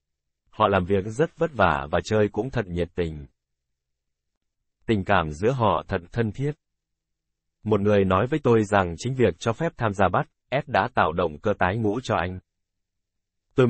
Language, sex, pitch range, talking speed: Vietnamese, male, 85-115 Hz, 185 wpm